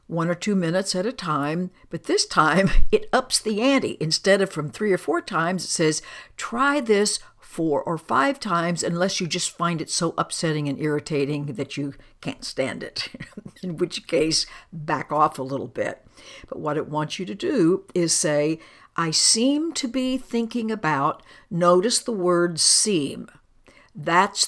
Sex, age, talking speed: female, 60-79, 175 wpm